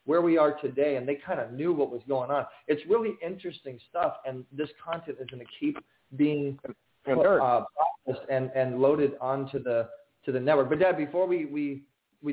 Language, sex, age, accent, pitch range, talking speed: English, male, 30-49, American, 130-155 Hz, 205 wpm